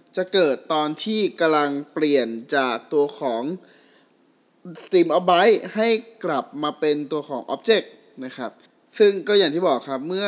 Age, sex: 20-39, male